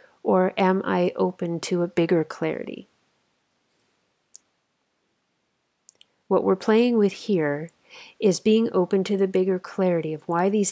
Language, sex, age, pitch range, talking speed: English, female, 30-49, 165-195 Hz, 130 wpm